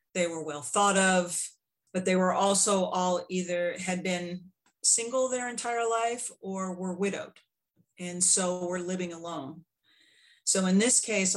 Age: 40-59